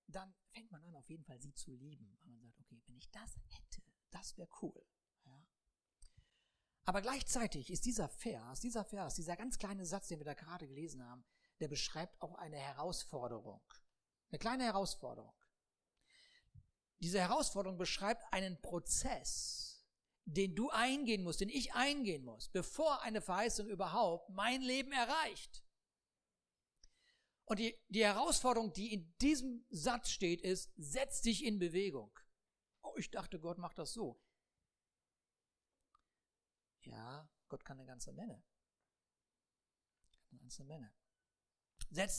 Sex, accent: male, German